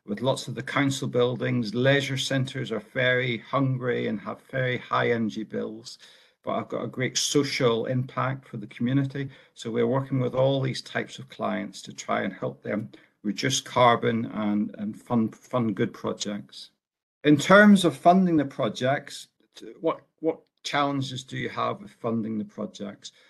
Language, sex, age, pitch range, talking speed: Hungarian, male, 50-69, 115-135 Hz, 165 wpm